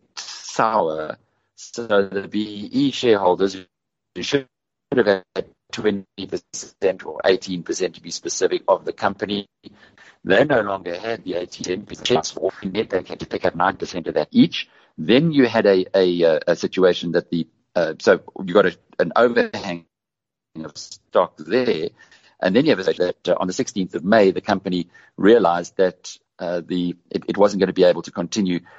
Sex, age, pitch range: male, 50-69, 90-110 Hz